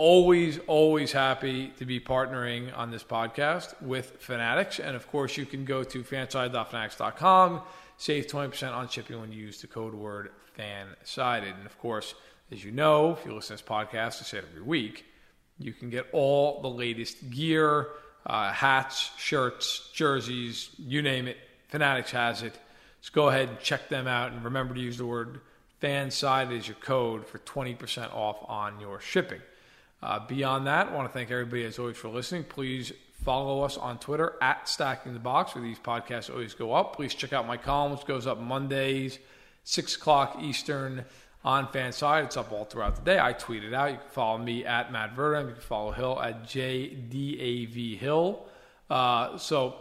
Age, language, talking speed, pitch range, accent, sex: 40-59, English, 190 wpm, 120-145 Hz, American, male